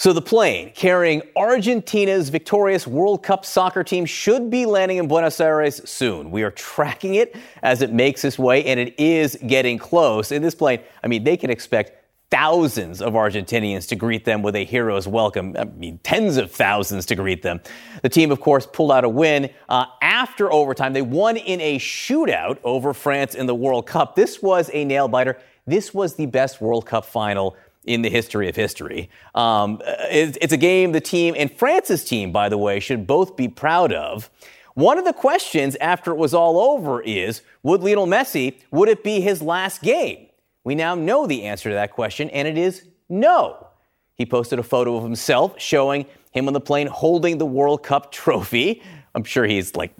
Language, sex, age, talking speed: English, male, 30-49, 195 wpm